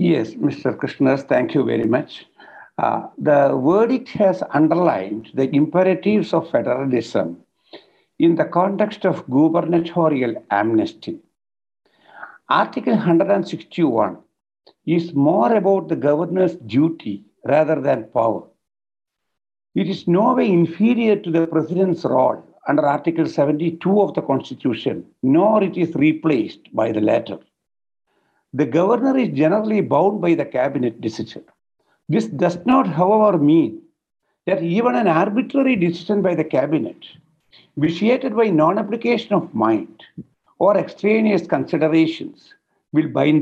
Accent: Indian